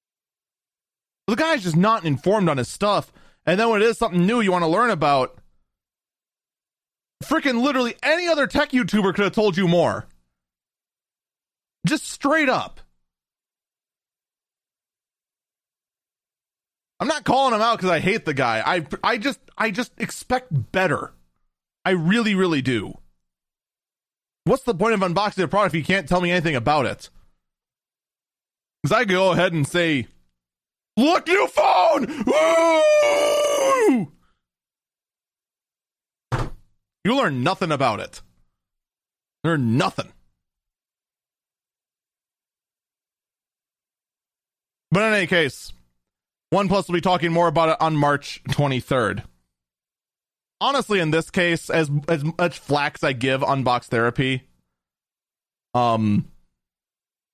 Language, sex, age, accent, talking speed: English, male, 30-49, American, 120 wpm